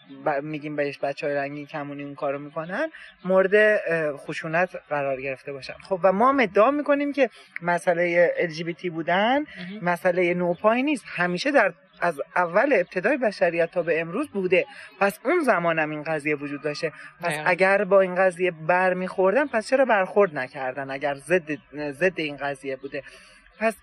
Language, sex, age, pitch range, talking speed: English, male, 30-49, 155-205 Hz, 155 wpm